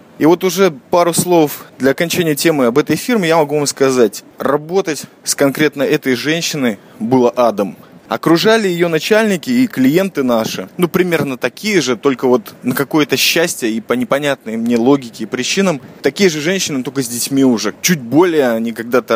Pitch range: 130-180 Hz